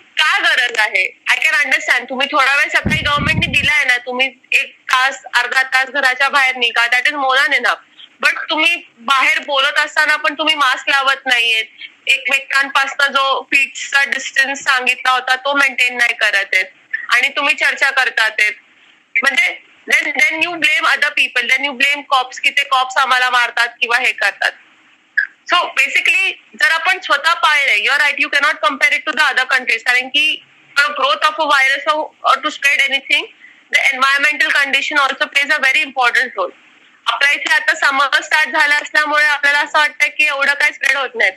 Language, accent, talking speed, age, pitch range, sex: Marathi, native, 170 wpm, 20-39, 265-305 Hz, female